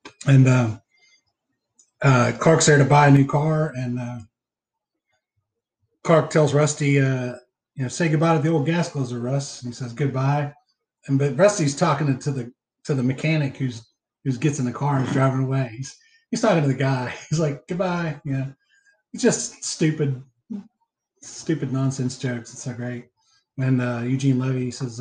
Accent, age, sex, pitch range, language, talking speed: American, 30-49, male, 130-165 Hz, English, 180 wpm